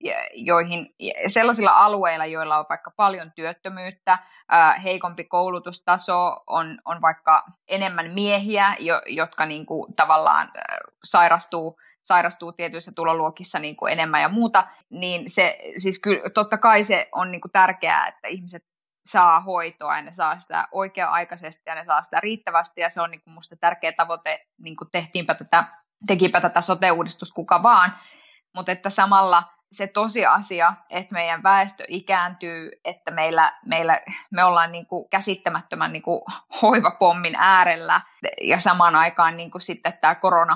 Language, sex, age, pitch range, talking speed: Finnish, female, 20-39, 165-195 Hz, 140 wpm